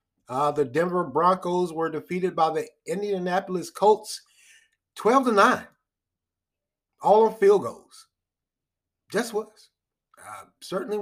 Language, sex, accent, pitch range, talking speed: English, male, American, 135-210 Hz, 115 wpm